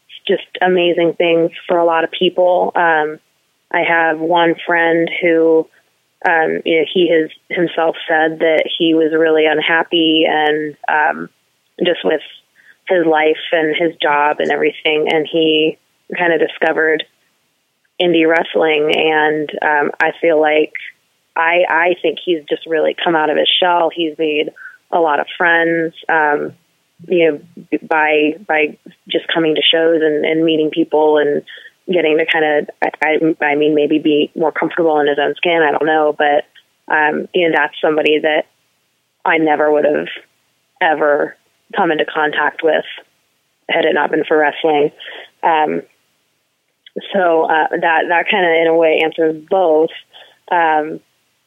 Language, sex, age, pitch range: English, female, 20-39, 155-170 Hz